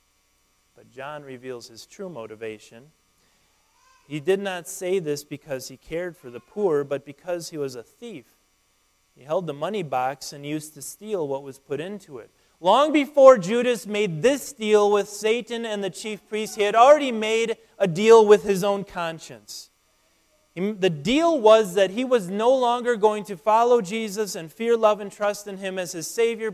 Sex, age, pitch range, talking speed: male, 30-49, 125-210 Hz, 180 wpm